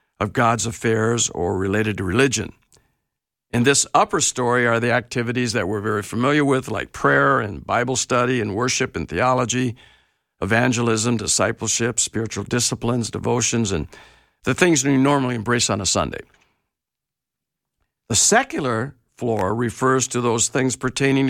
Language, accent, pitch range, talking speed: English, American, 115-140 Hz, 140 wpm